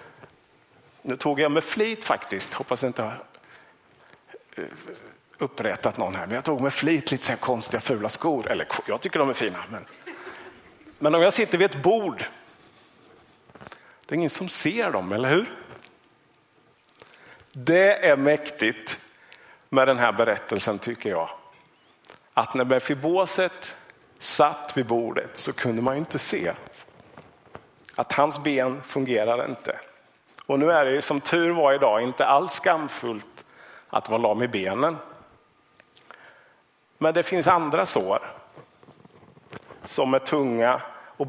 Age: 50-69